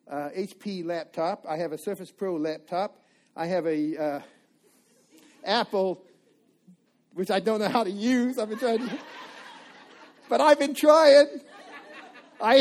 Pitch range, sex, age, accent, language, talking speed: 180-245 Hz, male, 50-69, American, English, 140 wpm